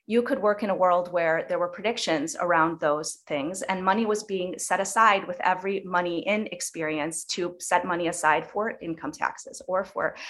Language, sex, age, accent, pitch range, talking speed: English, female, 30-49, American, 170-215 Hz, 190 wpm